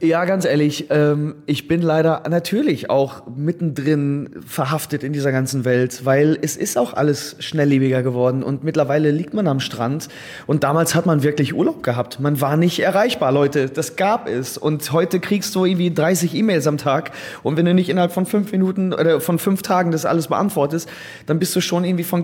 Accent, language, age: German, German, 30-49